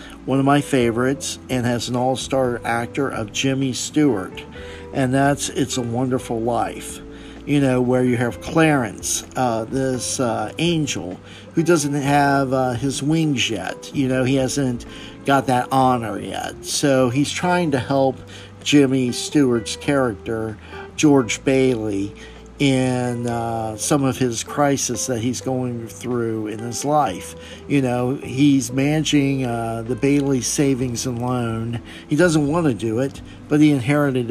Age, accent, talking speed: 50-69, American, 150 wpm